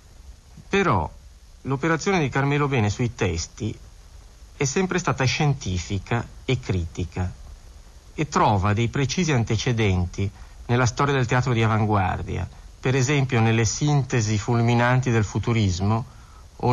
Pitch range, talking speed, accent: 95-130 Hz, 115 wpm, native